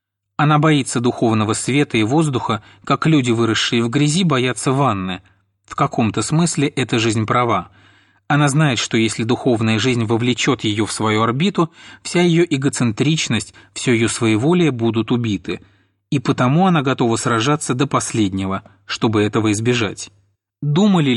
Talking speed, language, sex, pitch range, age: 140 wpm, Russian, male, 105-145 Hz, 30-49